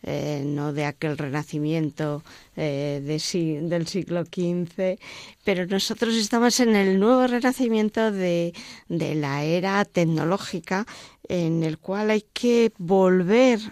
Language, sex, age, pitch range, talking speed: Spanish, female, 20-39, 165-220 Hz, 120 wpm